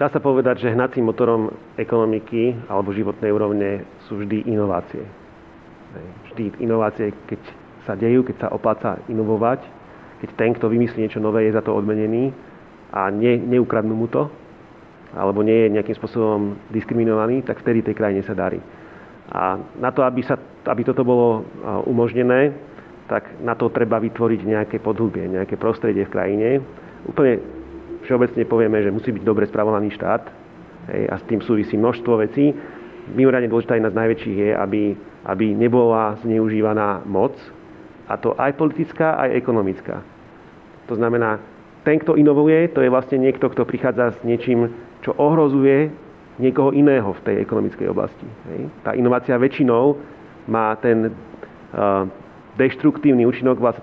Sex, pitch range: male, 110-125 Hz